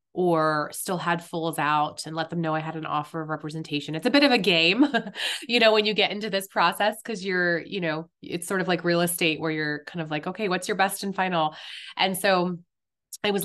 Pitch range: 155-185 Hz